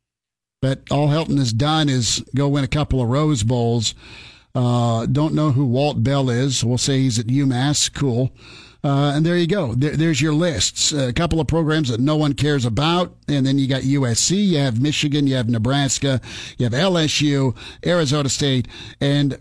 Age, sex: 50-69, male